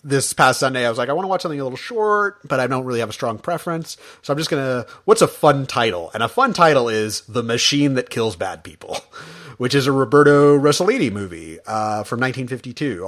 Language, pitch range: English, 110-140 Hz